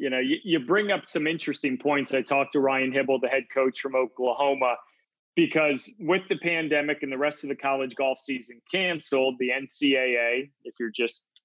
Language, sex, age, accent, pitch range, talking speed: English, male, 30-49, American, 135-160 Hz, 195 wpm